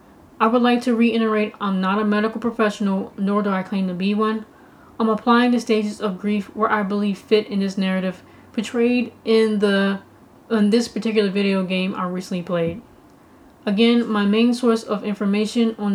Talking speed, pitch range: 180 wpm, 200-225 Hz